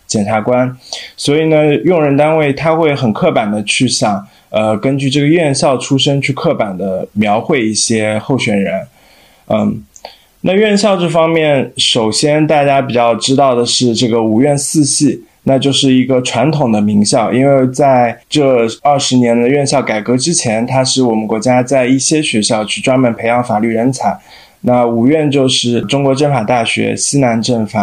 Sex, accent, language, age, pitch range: male, native, Chinese, 20-39, 115-140 Hz